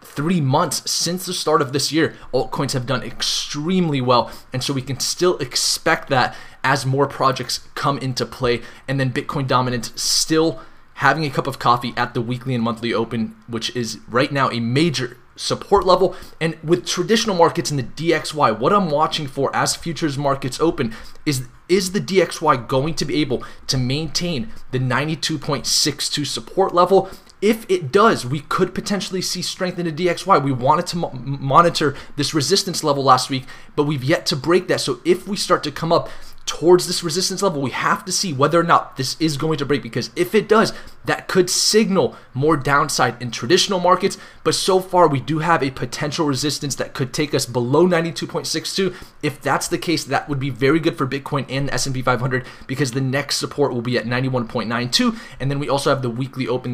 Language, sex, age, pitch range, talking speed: English, male, 20-39, 130-175 Hz, 205 wpm